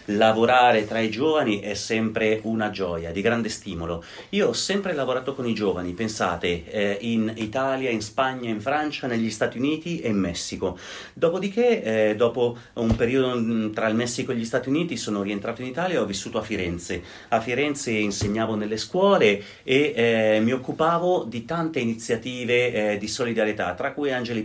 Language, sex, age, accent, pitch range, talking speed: Italian, male, 30-49, native, 110-140 Hz, 175 wpm